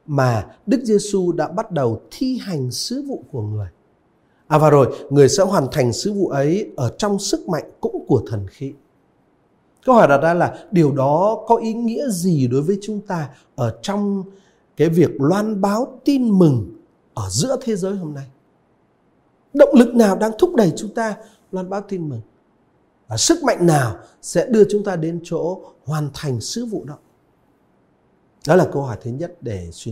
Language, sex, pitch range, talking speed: Vietnamese, male, 140-220 Hz, 190 wpm